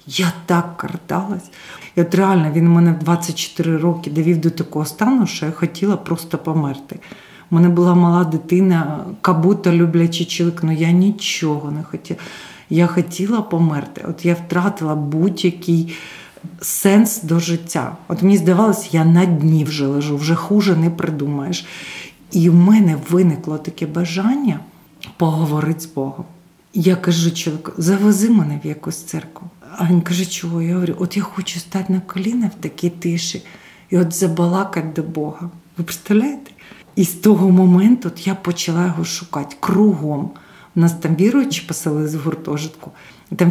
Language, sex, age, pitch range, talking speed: Ukrainian, female, 40-59, 165-190 Hz, 150 wpm